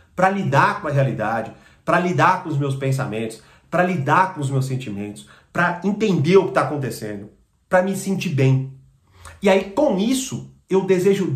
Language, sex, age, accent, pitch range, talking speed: Portuguese, male, 40-59, Brazilian, 140-215 Hz, 175 wpm